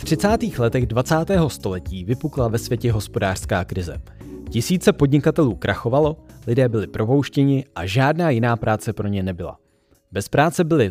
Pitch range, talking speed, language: 105-150 Hz, 145 wpm, Czech